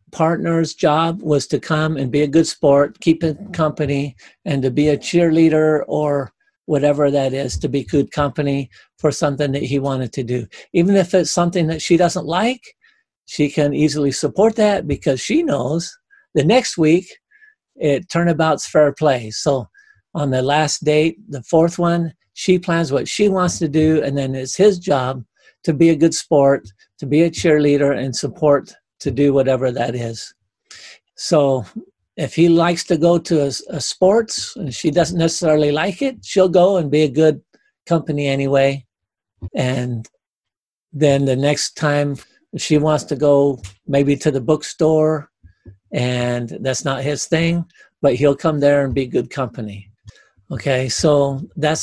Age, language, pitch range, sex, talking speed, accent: 50-69, English, 140-170 Hz, male, 170 wpm, American